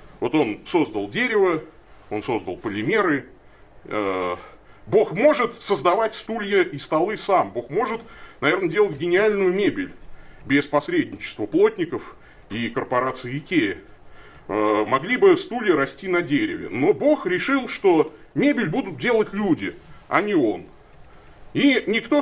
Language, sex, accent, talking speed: Russian, male, native, 120 wpm